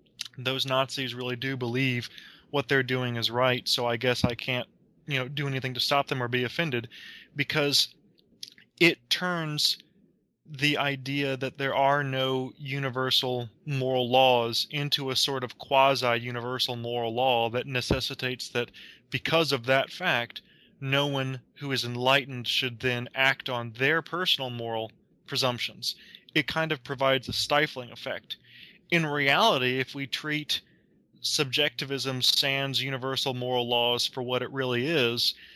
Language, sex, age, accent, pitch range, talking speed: English, male, 20-39, American, 125-140 Hz, 145 wpm